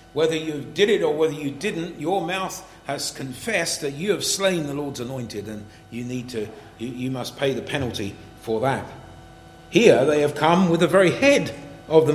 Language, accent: English, British